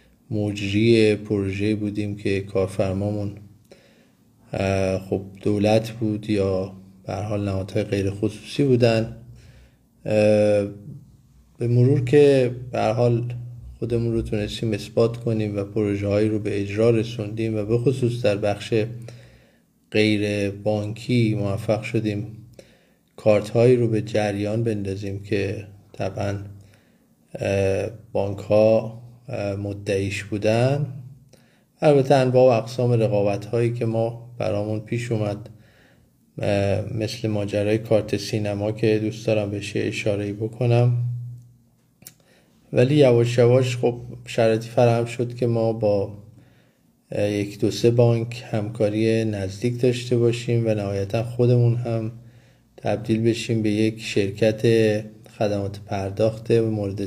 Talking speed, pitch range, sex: 110 wpm, 105-120 Hz, male